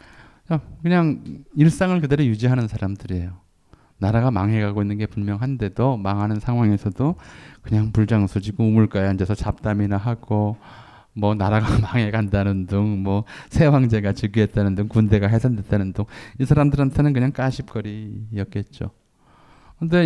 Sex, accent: male, native